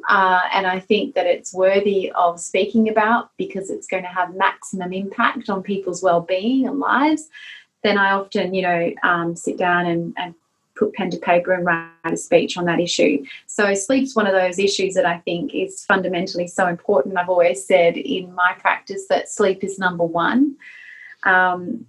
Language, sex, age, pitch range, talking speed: English, female, 30-49, 180-215 Hz, 185 wpm